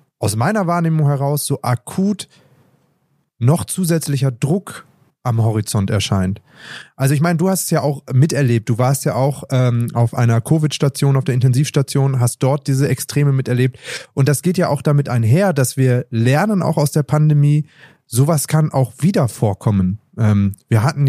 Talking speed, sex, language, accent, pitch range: 170 wpm, male, German, German, 125-155 Hz